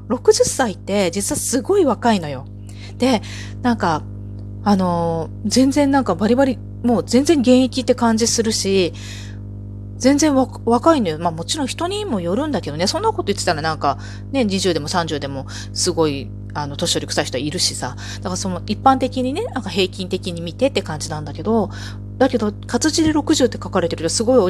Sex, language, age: female, Japanese, 30-49